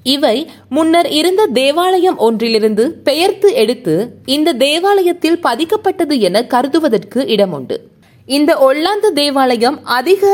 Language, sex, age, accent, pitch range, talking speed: Tamil, female, 20-39, native, 245-345 Hz, 105 wpm